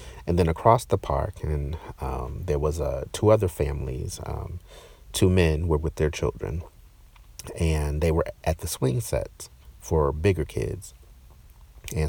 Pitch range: 70-85 Hz